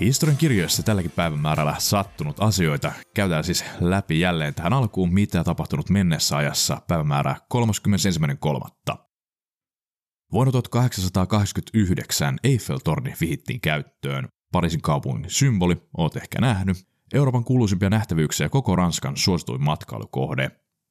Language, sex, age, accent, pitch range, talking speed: Finnish, male, 30-49, native, 80-120 Hz, 100 wpm